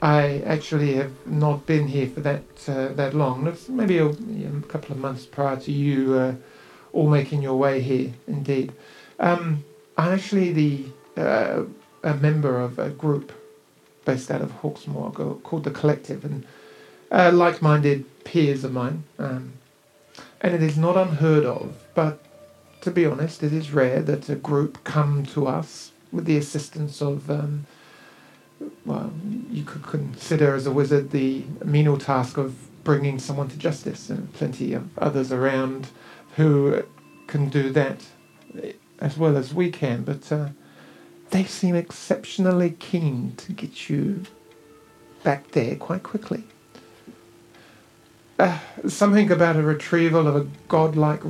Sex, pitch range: male, 140-165 Hz